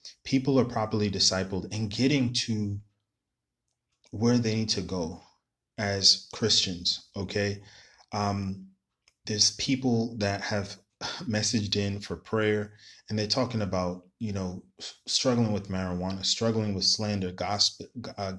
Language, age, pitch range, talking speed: English, 20-39, 95-115 Hz, 125 wpm